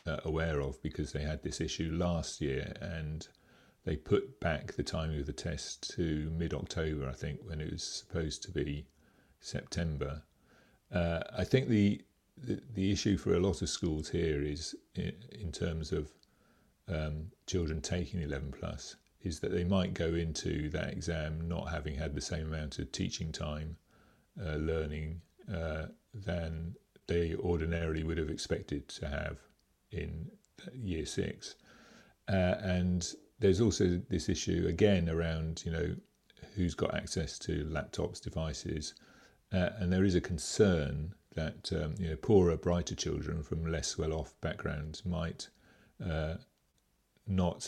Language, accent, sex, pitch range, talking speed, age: English, British, male, 75-90 Hz, 150 wpm, 40-59